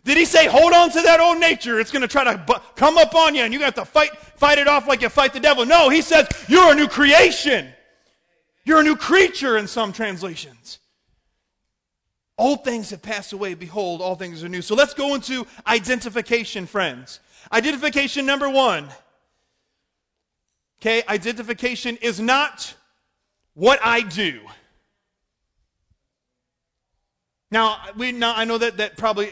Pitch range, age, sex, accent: 205-275 Hz, 30-49, male, American